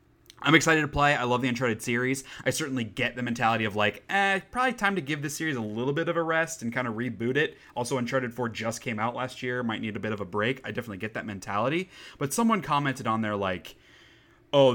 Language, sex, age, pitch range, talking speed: English, male, 20-39, 110-140 Hz, 250 wpm